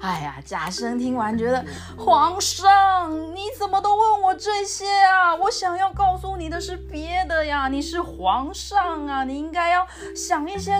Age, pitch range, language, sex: 30-49, 220-365 Hz, Chinese, female